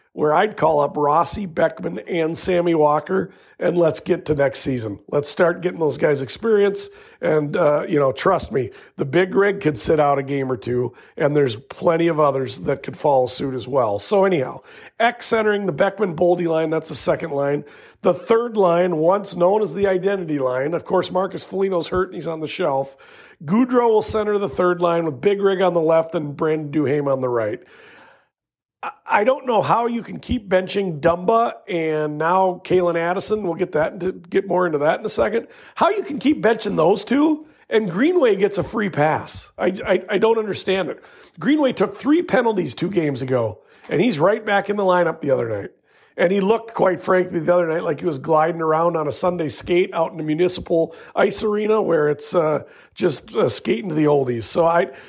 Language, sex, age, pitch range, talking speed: English, male, 40-59, 155-200 Hz, 205 wpm